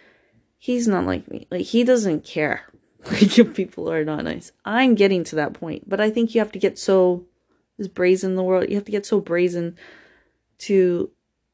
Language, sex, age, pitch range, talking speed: English, female, 30-49, 170-225 Hz, 190 wpm